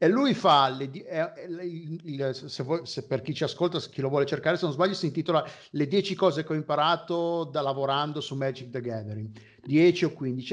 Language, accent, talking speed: Italian, native, 200 wpm